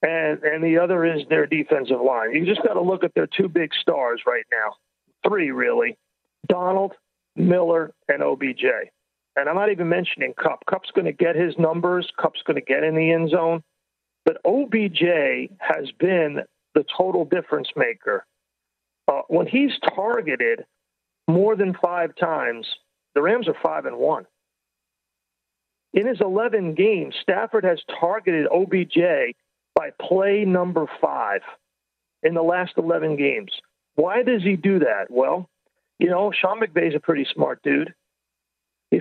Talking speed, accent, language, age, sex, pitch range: 155 wpm, American, English, 40-59, male, 150-190 Hz